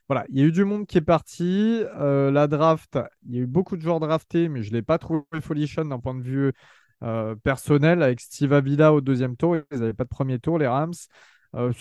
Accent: French